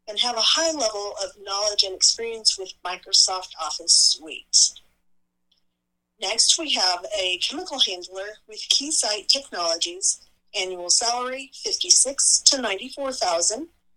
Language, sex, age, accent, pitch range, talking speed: English, female, 40-59, American, 190-275 Hz, 115 wpm